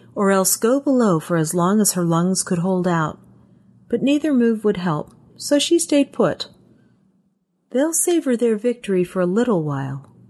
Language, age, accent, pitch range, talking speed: English, 40-59, American, 155-220 Hz, 175 wpm